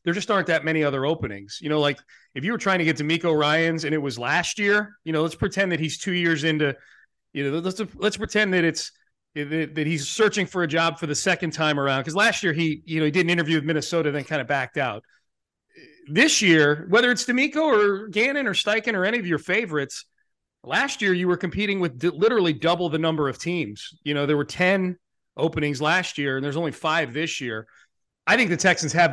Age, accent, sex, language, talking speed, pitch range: 30-49, American, male, English, 230 wpm, 145-185 Hz